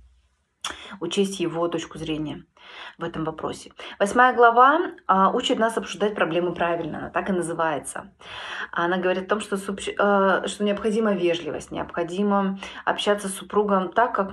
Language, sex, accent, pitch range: Russian, female, native, 165-200 Hz